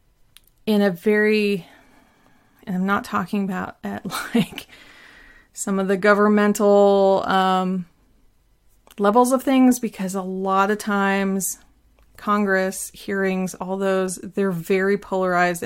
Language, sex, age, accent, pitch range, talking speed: English, female, 30-49, American, 190-220 Hz, 115 wpm